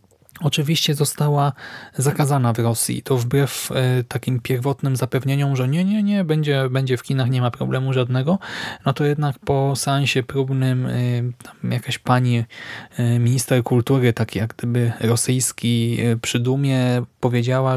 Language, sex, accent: Polish, male, native